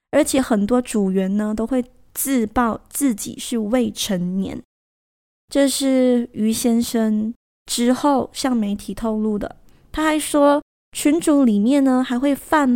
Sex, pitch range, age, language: female, 215-260 Hz, 20-39, Chinese